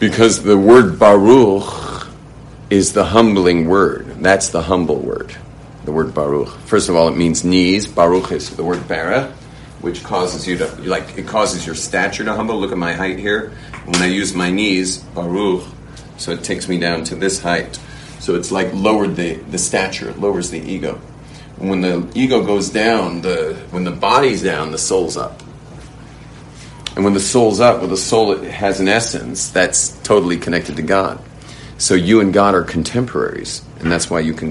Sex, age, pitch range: male, 40-59, 85-115 Hz